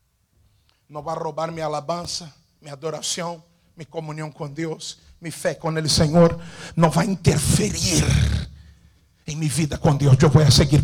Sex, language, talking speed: male, Spanish, 165 wpm